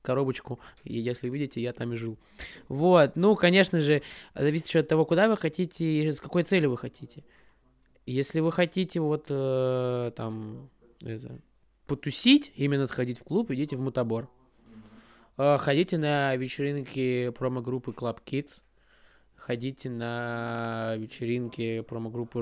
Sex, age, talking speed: male, 20-39, 135 wpm